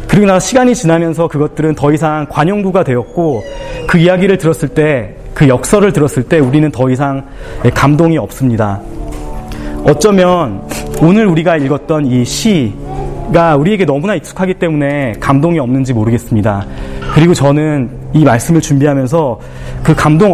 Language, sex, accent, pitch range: Korean, male, native, 120-160 Hz